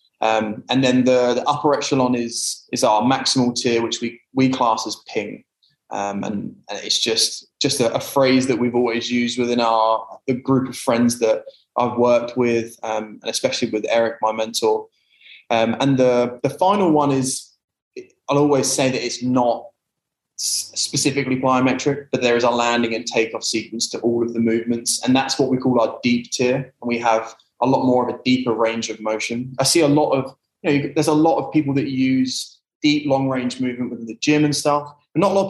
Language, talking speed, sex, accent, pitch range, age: English, 205 wpm, male, British, 120-145 Hz, 20-39